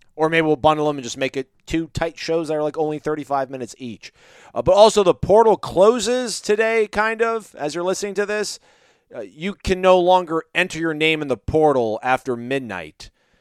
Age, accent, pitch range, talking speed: 30-49, American, 115-155 Hz, 205 wpm